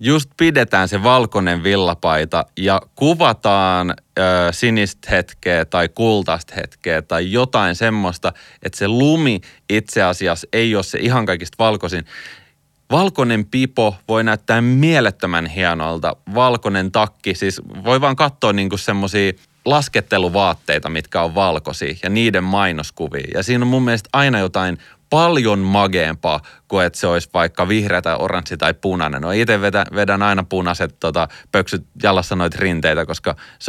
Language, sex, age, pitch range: Finnish, male, 30-49, 90-115 Hz